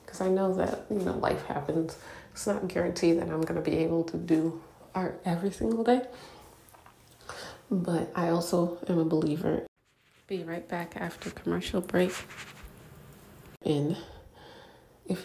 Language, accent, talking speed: English, American, 145 wpm